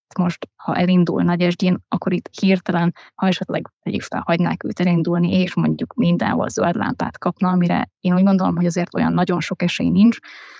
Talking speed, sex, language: 170 wpm, female, Hungarian